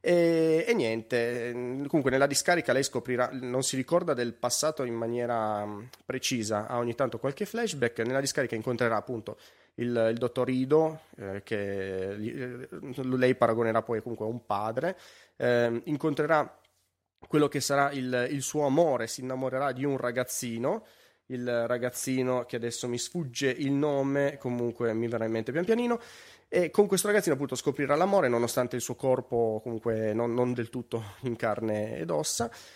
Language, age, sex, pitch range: Italian, 30-49, male, 115-135 Hz